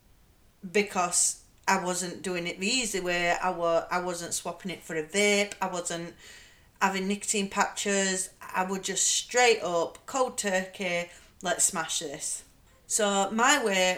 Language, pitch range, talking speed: English, 175-225 Hz, 145 wpm